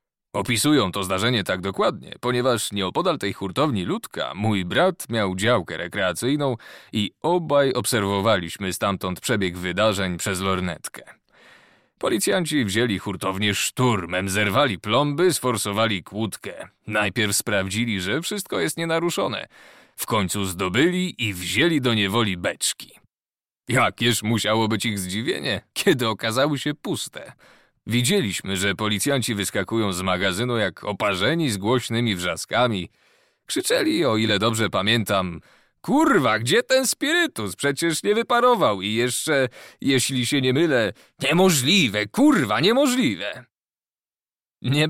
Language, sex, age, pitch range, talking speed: Polish, male, 30-49, 100-135 Hz, 115 wpm